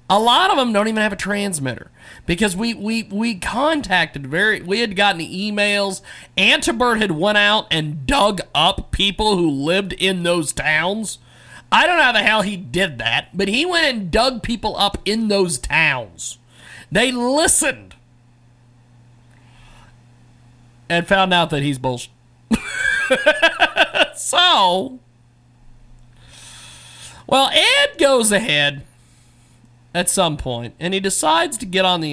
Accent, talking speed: American, 140 wpm